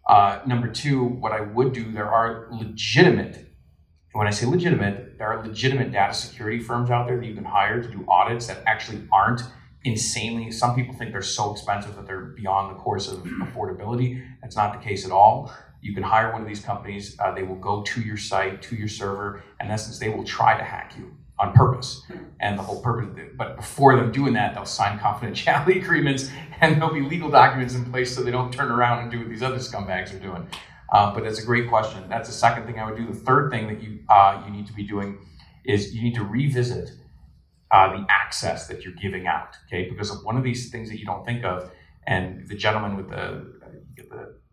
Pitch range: 100-125 Hz